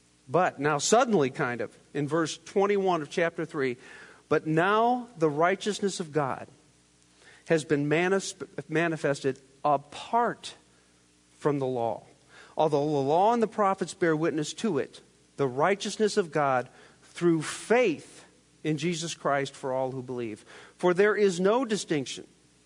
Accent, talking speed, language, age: American, 140 wpm, English, 50-69